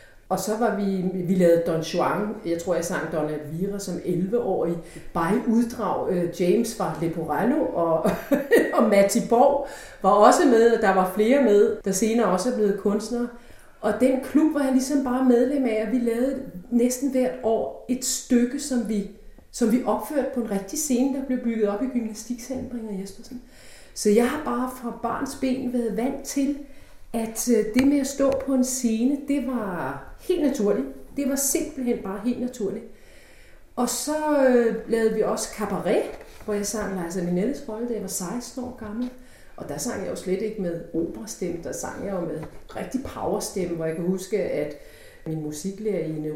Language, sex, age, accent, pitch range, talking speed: Danish, female, 30-49, native, 190-255 Hz, 185 wpm